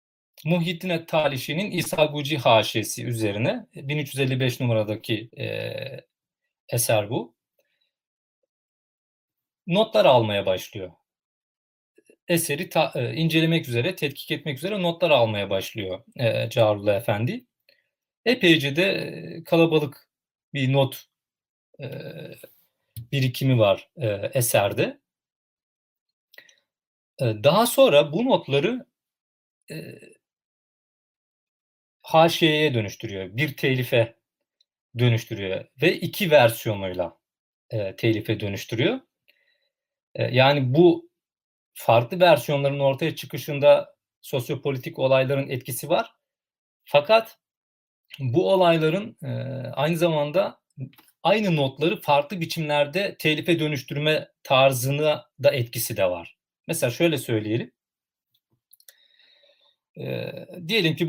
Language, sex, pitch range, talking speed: Turkish, male, 120-170 Hz, 85 wpm